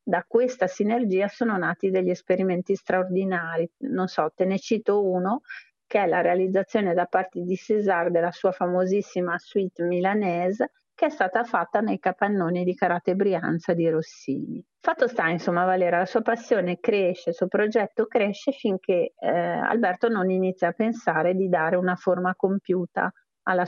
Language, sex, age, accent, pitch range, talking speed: Italian, female, 40-59, native, 175-220 Hz, 160 wpm